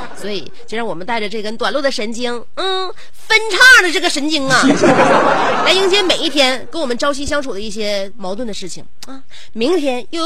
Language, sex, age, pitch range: Chinese, female, 30-49, 175-265 Hz